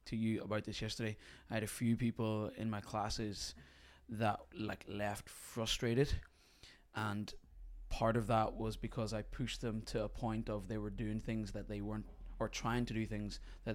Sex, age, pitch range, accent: male, 20-39, 95-110 Hz, British